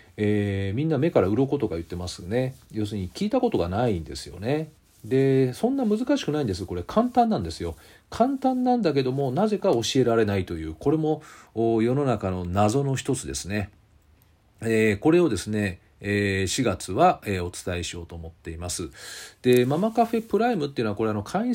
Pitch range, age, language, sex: 100-165 Hz, 40-59, Japanese, male